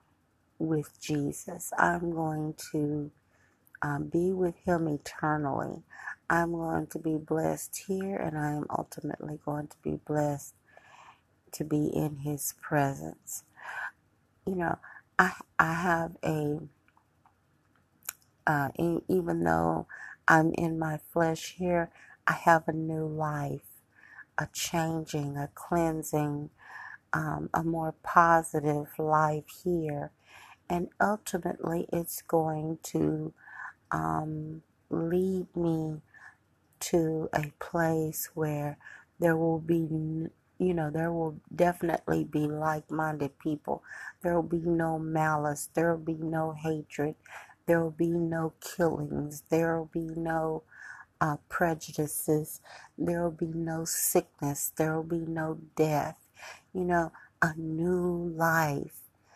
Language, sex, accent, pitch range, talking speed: English, female, American, 150-170 Hz, 120 wpm